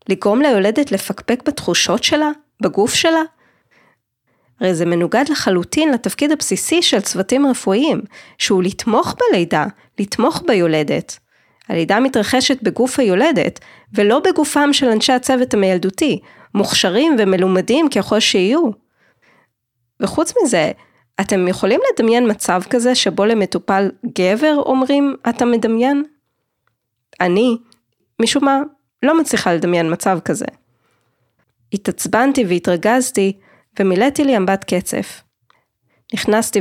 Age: 20-39